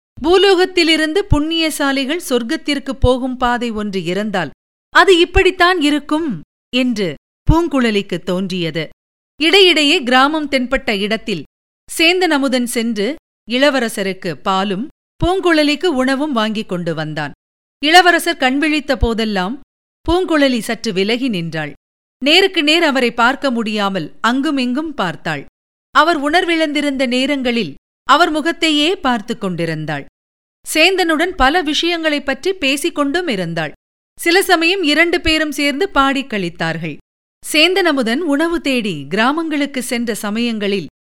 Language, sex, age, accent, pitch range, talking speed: Tamil, female, 50-69, native, 205-315 Hz, 95 wpm